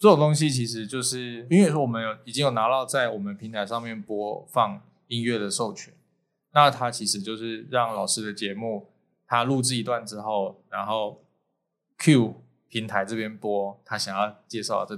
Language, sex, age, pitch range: Chinese, male, 20-39, 105-140 Hz